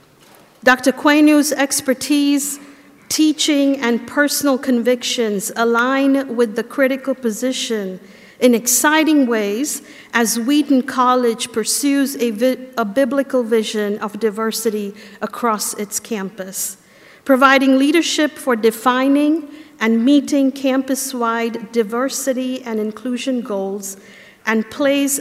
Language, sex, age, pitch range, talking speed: English, female, 50-69, 215-265 Hz, 100 wpm